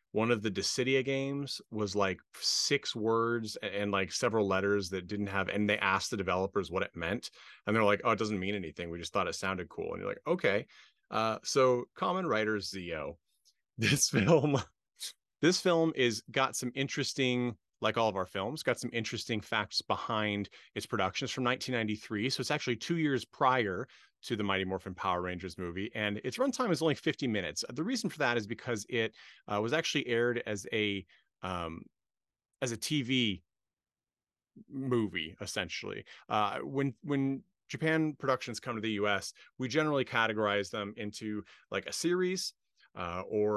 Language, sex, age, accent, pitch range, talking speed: English, male, 30-49, American, 100-130 Hz, 175 wpm